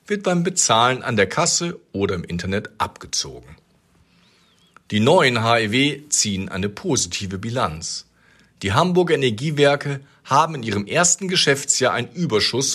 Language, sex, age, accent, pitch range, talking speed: German, male, 40-59, German, 110-150 Hz, 125 wpm